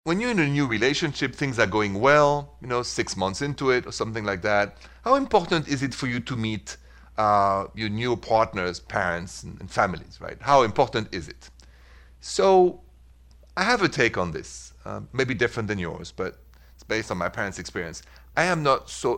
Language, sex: English, male